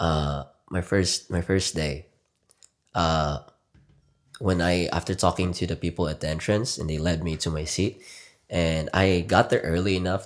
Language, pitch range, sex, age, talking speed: Filipino, 80-105 Hz, male, 20-39, 175 wpm